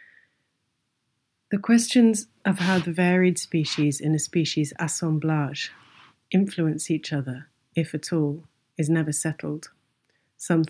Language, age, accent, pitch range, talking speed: English, 30-49, British, 145-165 Hz, 120 wpm